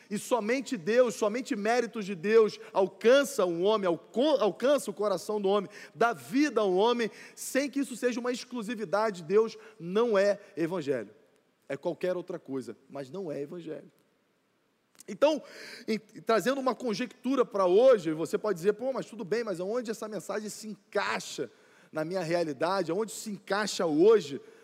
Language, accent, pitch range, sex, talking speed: Portuguese, Brazilian, 185-230 Hz, male, 165 wpm